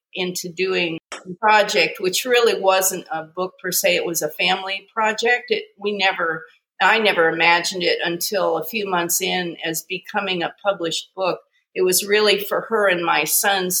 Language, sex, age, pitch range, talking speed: English, female, 50-69, 175-210 Hz, 180 wpm